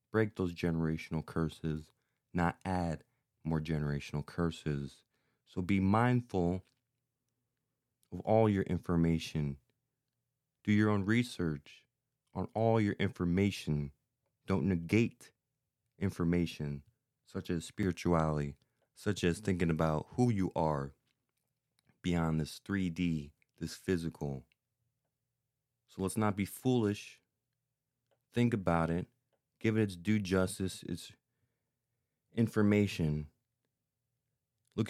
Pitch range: 85-115 Hz